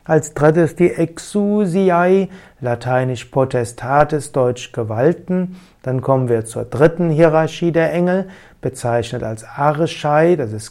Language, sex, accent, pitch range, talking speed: German, male, German, 130-170 Hz, 120 wpm